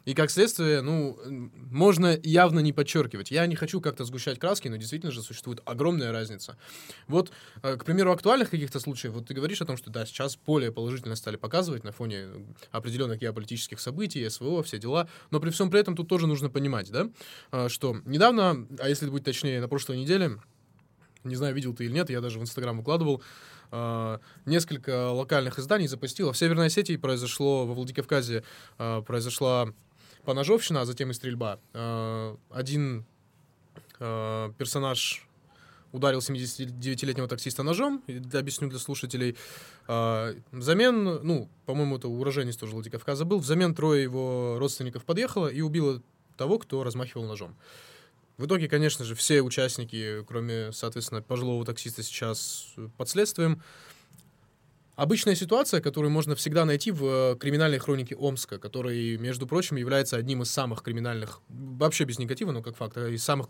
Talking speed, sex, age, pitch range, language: 150 wpm, male, 20-39, 120-155 Hz, Russian